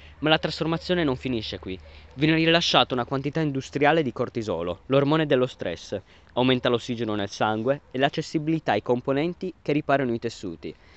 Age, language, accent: 20-39, Italian, native